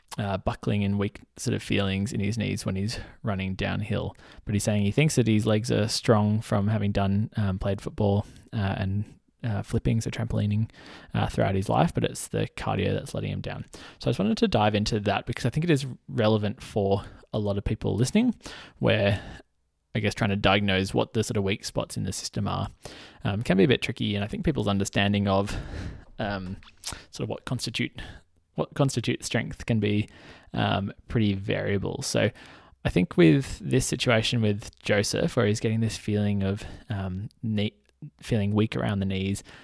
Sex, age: male, 20-39